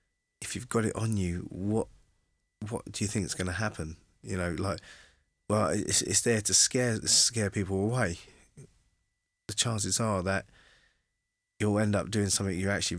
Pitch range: 90-100 Hz